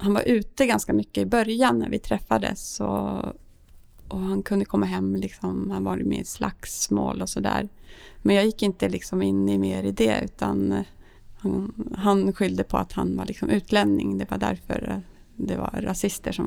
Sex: female